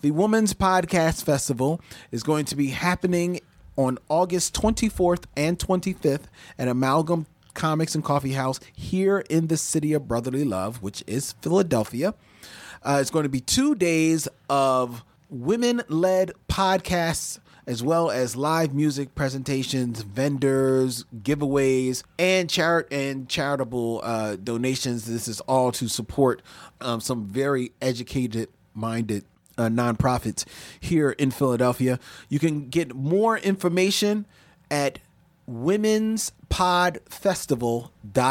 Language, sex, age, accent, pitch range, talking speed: English, male, 30-49, American, 125-175 Hz, 115 wpm